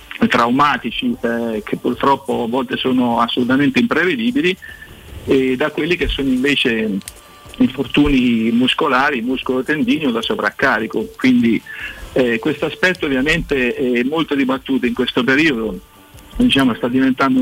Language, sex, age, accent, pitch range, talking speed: Italian, male, 50-69, native, 125-160 Hz, 120 wpm